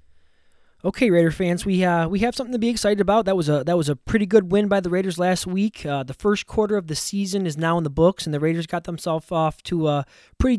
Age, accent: 20-39, American